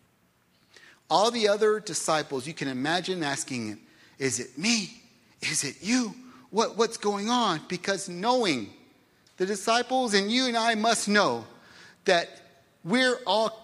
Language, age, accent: English, 40-59, American